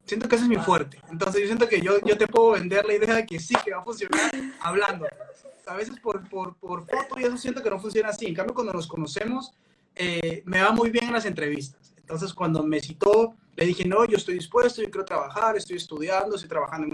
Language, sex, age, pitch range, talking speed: Spanish, male, 20-39, 170-215 Hz, 240 wpm